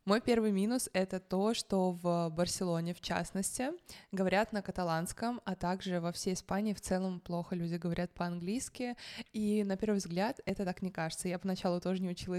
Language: Russian